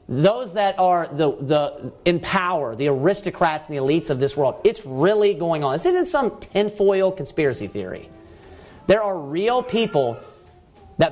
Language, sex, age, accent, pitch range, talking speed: English, male, 40-59, American, 140-195 Hz, 160 wpm